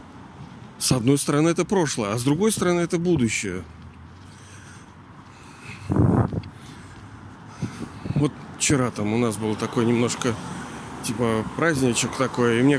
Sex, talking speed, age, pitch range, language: male, 115 wpm, 40-59, 130-175 Hz, Russian